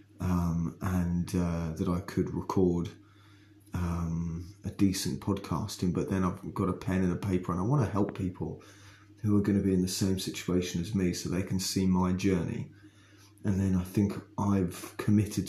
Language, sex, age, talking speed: English, male, 30-49, 190 wpm